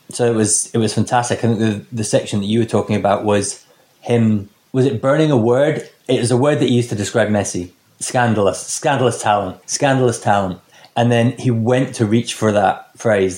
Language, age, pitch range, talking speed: English, 20-39, 100-120 Hz, 205 wpm